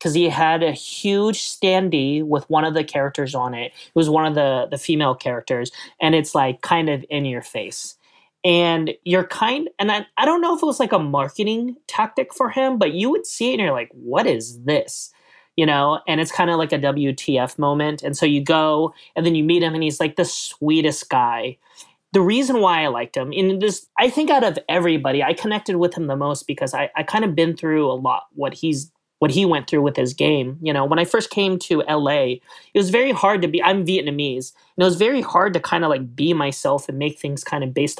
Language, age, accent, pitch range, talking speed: English, 30-49, American, 145-190 Hz, 240 wpm